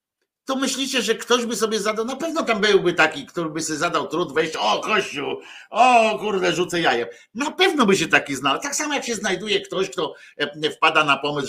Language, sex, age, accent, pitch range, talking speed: Polish, male, 50-69, native, 130-200 Hz, 210 wpm